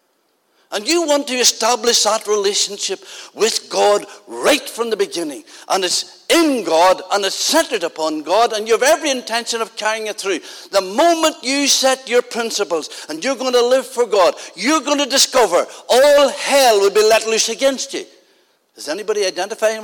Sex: male